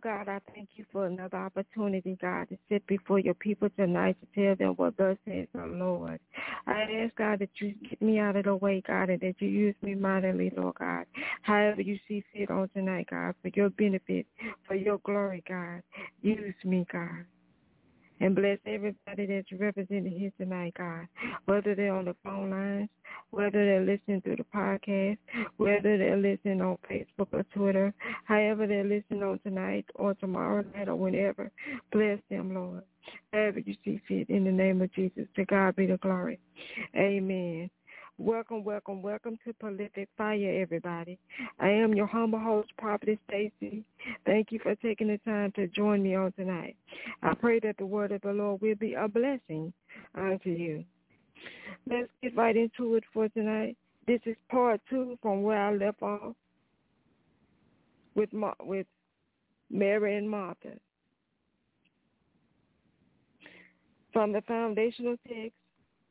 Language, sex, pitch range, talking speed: English, female, 190-215 Hz, 160 wpm